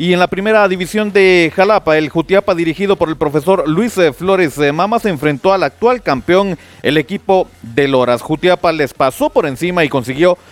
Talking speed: 185 wpm